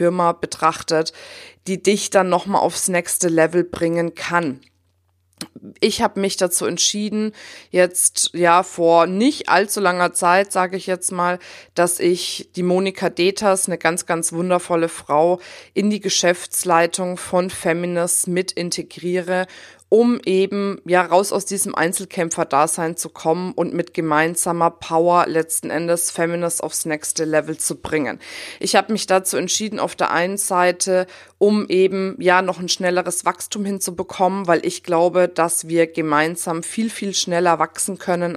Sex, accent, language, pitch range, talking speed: female, German, German, 170-190 Hz, 145 wpm